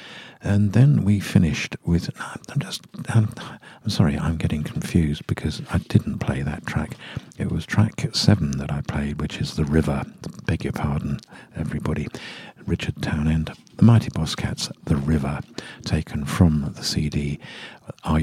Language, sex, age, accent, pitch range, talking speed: English, male, 50-69, British, 75-95 Hz, 160 wpm